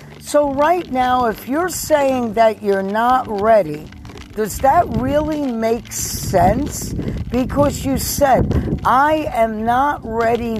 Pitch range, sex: 195-255 Hz, female